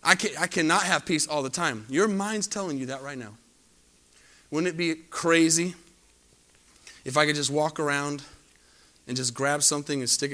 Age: 30-49